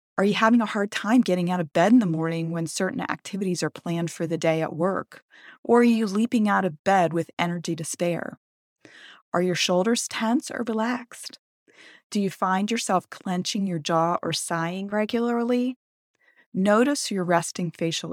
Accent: American